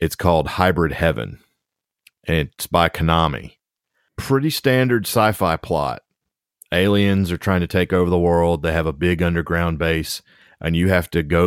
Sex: male